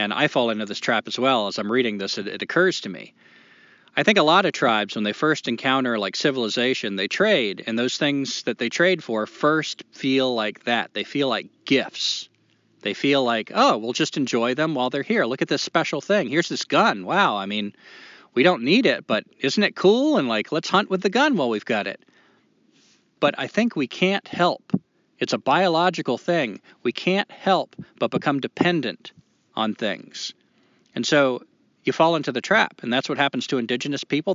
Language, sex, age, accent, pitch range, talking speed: English, male, 40-59, American, 120-155 Hz, 205 wpm